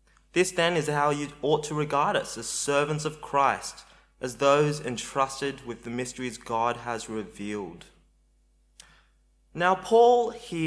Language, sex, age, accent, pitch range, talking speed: English, male, 20-39, Australian, 115-145 Hz, 140 wpm